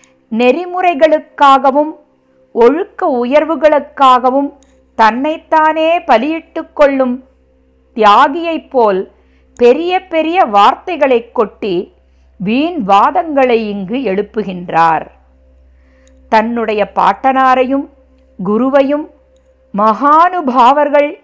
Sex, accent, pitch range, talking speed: female, native, 205-295 Hz, 55 wpm